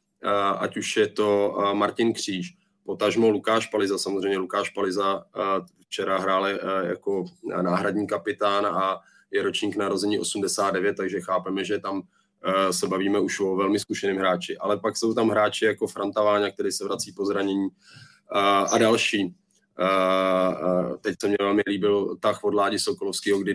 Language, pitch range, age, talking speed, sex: Czech, 100-115 Hz, 20-39, 150 wpm, male